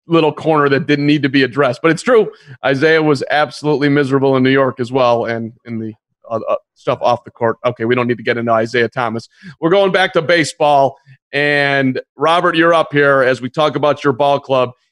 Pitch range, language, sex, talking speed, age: 135-165 Hz, English, male, 220 wpm, 40-59